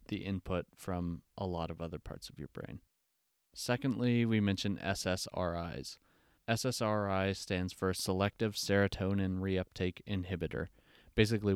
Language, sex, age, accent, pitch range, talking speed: English, male, 20-39, American, 90-100 Hz, 120 wpm